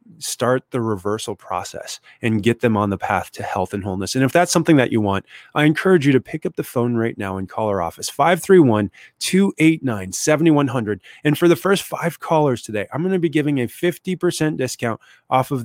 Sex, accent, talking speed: male, American, 205 wpm